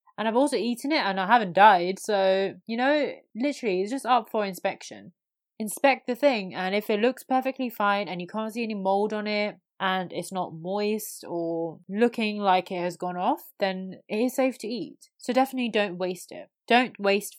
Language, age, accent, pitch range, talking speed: English, 20-39, British, 185-235 Hz, 205 wpm